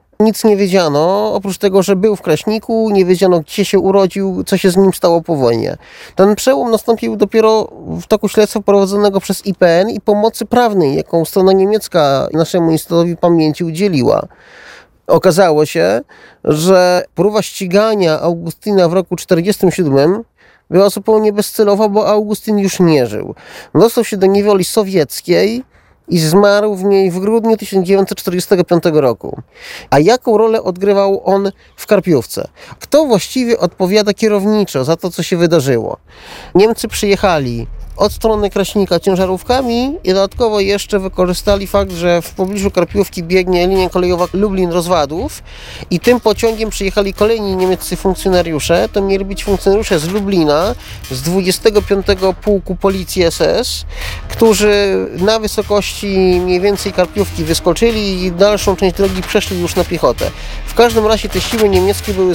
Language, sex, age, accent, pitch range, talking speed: Polish, male, 30-49, native, 180-210 Hz, 140 wpm